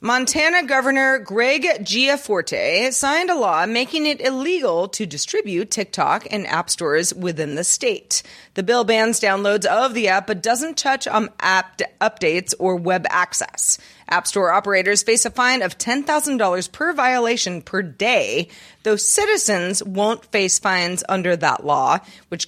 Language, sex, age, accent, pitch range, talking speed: English, female, 30-49, American, 185-250 Hz, 150 wpm